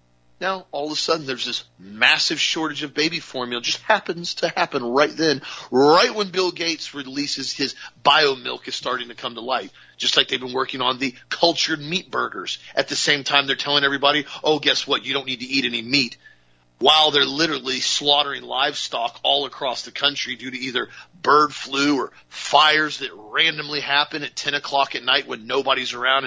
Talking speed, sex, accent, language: 195 wpm, male, American, English